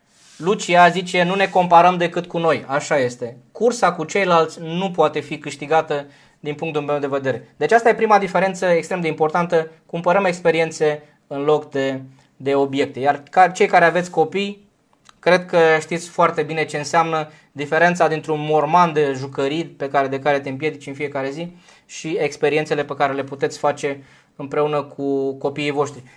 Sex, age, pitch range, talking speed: male, 20-39, 150-185 Hz, 170 wpm